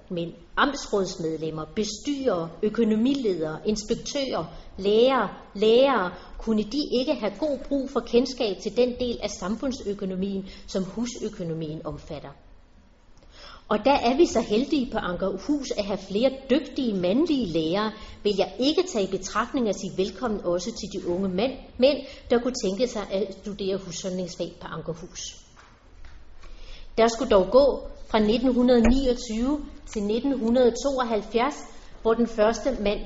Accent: native